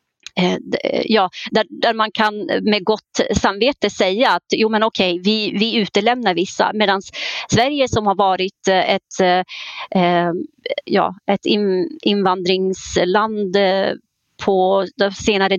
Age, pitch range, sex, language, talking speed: 30-49, 190-230 Hz, female, Swedish, 120 wpm